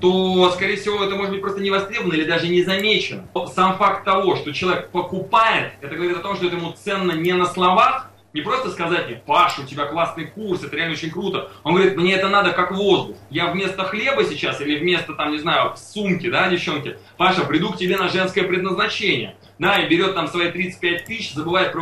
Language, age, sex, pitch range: Russian, 20-39, male, 155-190 Hz